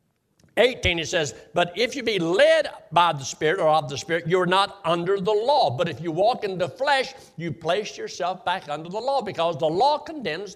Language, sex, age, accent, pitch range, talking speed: English, male, 60-79, American, 155-215 Hz, 220 wpm